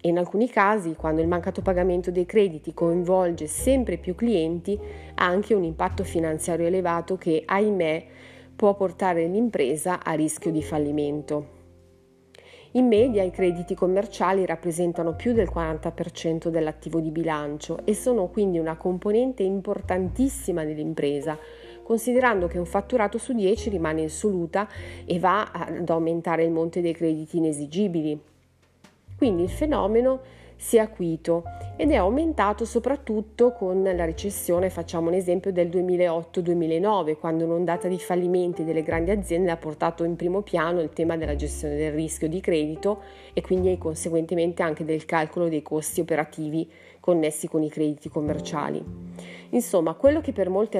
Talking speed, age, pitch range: 145 wpm, 30-49, 160-195 Hz